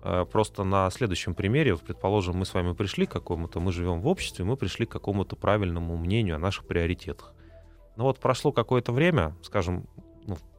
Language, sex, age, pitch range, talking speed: Russian, male, 30-49, 85-110 Hz, 175 wpm